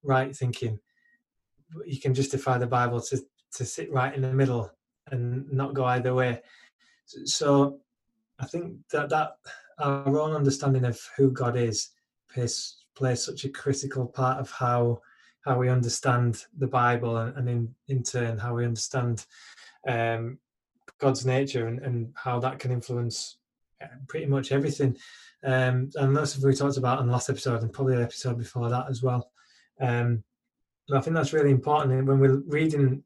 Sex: male